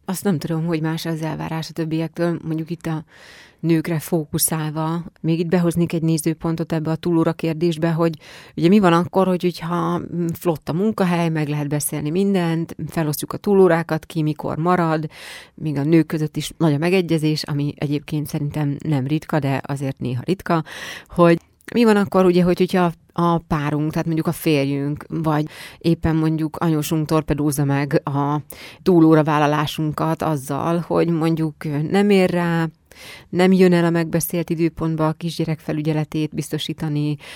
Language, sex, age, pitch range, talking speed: Hungarian, female, 30-49, 150-170 Hz, 155 wpm